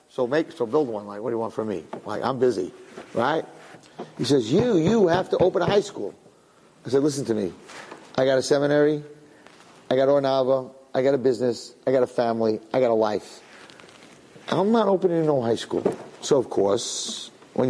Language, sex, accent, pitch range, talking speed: English, male, American, 125-170 Hz, 205 wpm